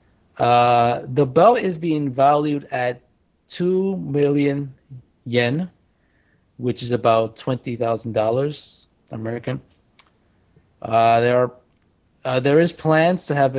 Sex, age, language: male, 30-49, English